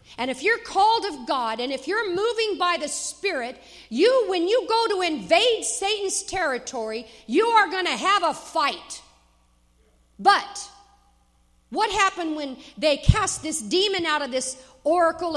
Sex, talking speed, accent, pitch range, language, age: female, 155 wpm, American, 220-315 Hz, English, 50-69